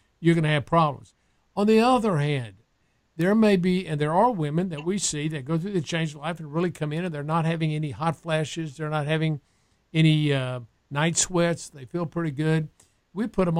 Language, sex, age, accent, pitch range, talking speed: English, male, 50-69, American, 140-170 Hz, 225 wpm